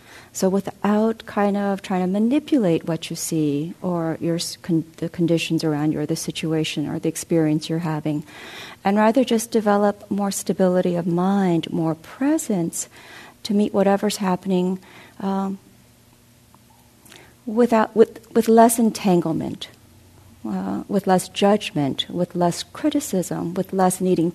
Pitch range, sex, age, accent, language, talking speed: 165-210 Hz, female, 50-69, American, English, 135 wpm